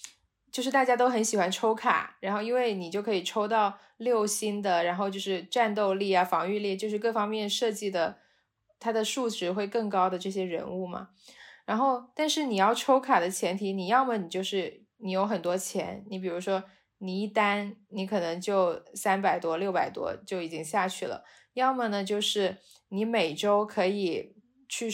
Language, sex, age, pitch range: Chinese, female, 20-39, 190-225 Hz